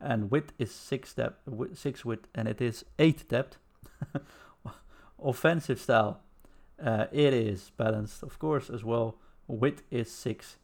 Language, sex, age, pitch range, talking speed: English, male, 50-69, 100-130 Hz, 140 wpm